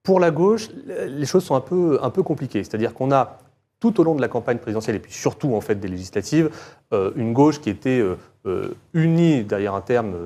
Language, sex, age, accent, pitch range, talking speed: French, male, 30-49, French, 110-140 Hz, 210 wpm